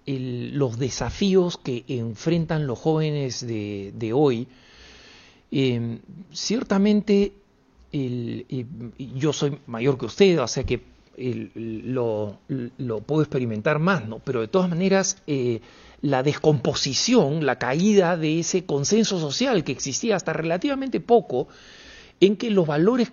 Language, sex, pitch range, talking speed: Spanish, male, 125-185 Hz, 140 wpm